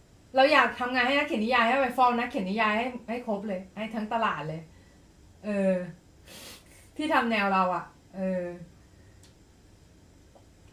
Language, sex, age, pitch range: Thai, female, 30-49, 175-245 Hz